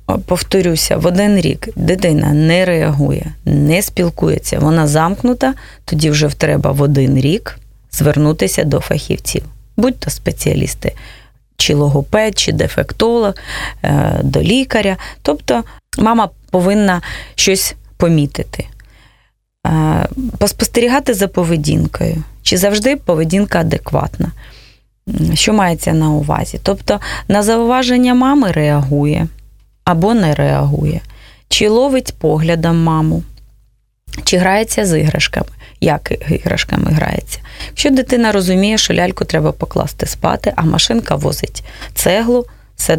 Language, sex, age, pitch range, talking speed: Russian, female, 20-39, 145-205 Hz, 105 wpm